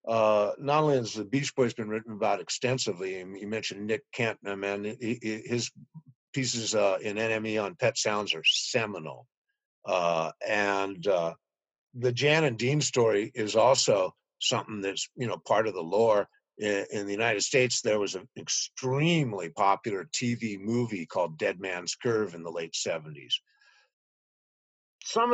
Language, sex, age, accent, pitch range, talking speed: English, male, 50-69, American, 110-135 Hz, 155 wpm